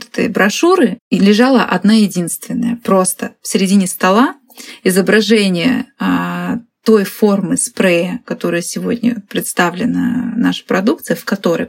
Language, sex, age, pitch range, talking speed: Russian, female, 20-39, 190-240 Hz, 105 wpm